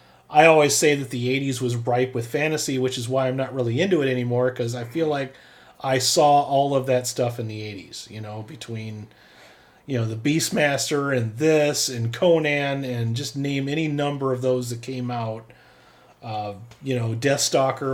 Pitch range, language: 120-150 Hz, English